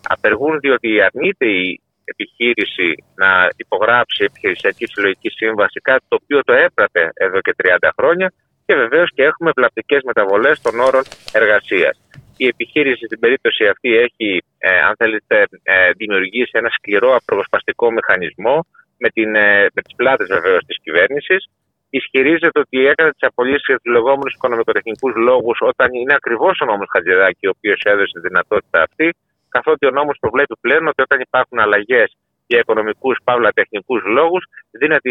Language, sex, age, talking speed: Greek, male, 30-49, 145 wpm